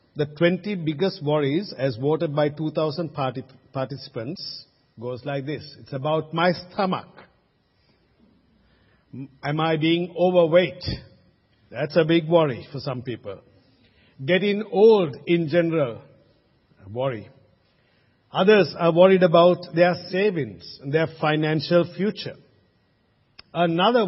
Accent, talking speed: Indian, 105 wpm